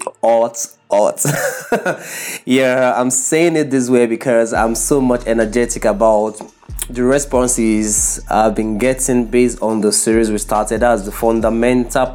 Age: 20-39